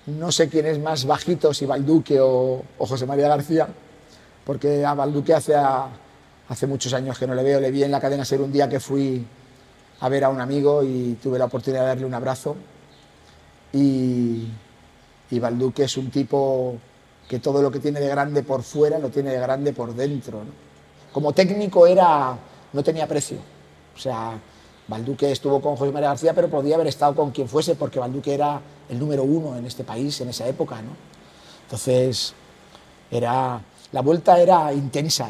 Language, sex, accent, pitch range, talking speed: Spanish, male, Spanish, 130-155 Hz, 185 wpm